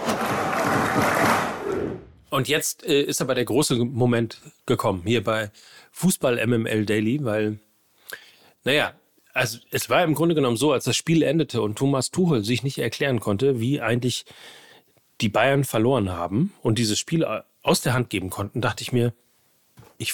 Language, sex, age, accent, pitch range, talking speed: German, male, 40-59, German, 120-170 Hz, 150 wpm